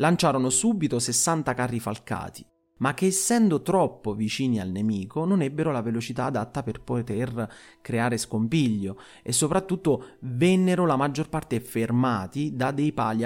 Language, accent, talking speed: Italian, native, 140 wpm